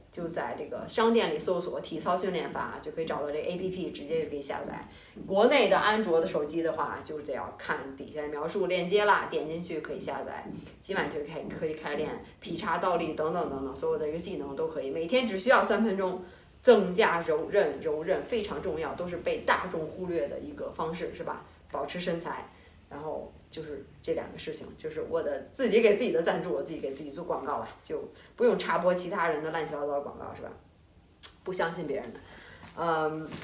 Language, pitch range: Chinese, 155-225 Hz